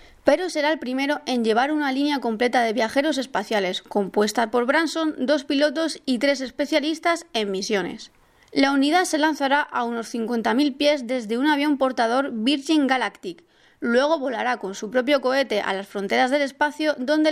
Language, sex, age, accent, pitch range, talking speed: Spanish, female, 30-49, Spanish, 235-300 Hz, 165 wpm